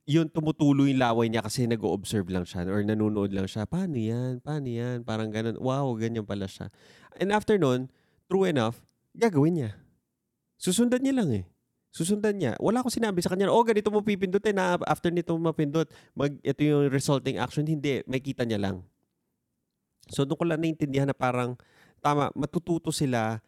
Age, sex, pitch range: 20-39, male, 105-150 Hz